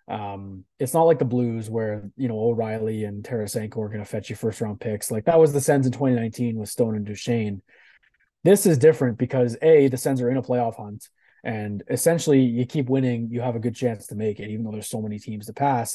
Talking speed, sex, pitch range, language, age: 245 wpm, male, 110-135 Hz, English, 20-39